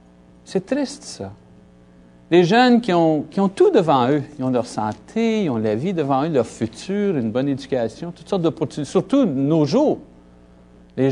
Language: French